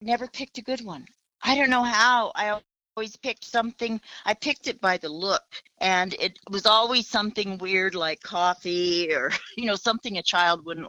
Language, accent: English, American